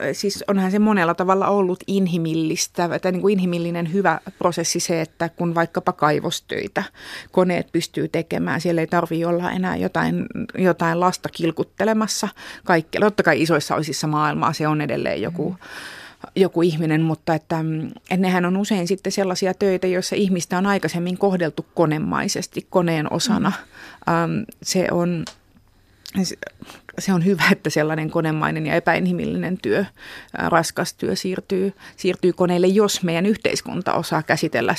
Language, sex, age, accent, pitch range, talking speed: Finnish, female, 30-49, native, 160-190 Hz, 135 wpm